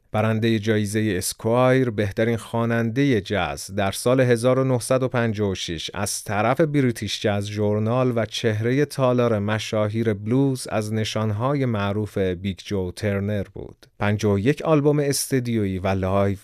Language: Persian